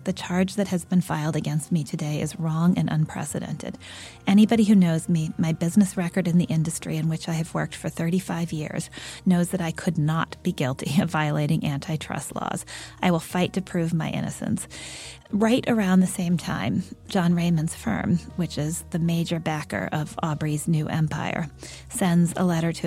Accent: American